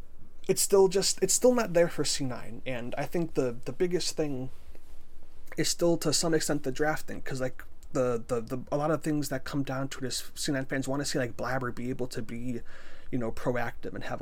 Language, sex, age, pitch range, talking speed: English, male, 30-49, 110-140 Hz, 225 wpm